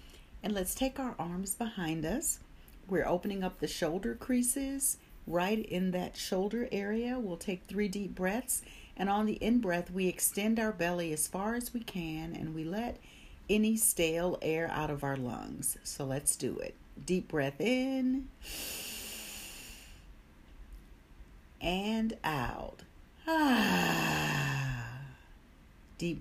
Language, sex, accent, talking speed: English, female, American, 130 wpm